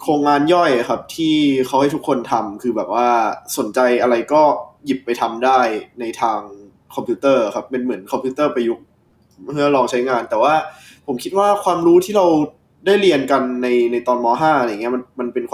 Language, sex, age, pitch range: Thai, male, 20-39, 125-155 Hz